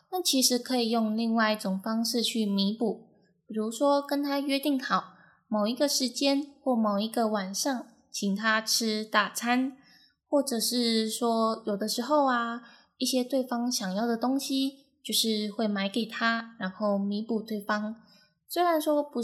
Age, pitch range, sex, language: 10-29, 210-255 Hz, female, Chinese